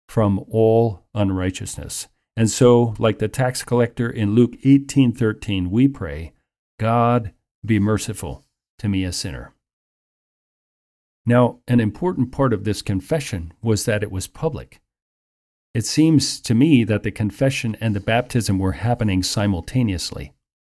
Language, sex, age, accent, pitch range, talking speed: English, male, 40-59, American, 95-120 Hz, 135 wpm